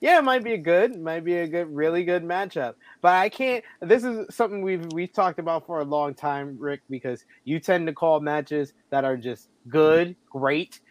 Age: 20-39